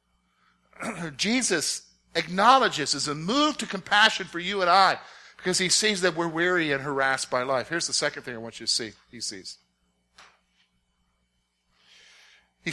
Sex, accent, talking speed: male, American, 155 wpm